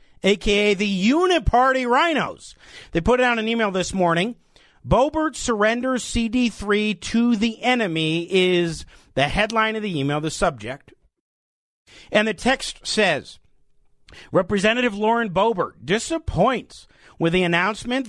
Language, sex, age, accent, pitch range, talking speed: English, male, 50-69, American, 190-265 Hz, 120 wpm